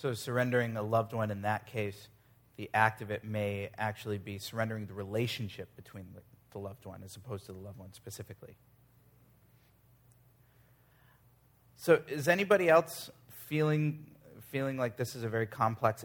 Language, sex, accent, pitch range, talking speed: English, male, American, 110-125 Hz, 155 wpm